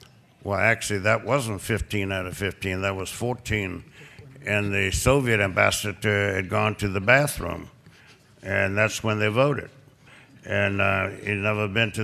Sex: male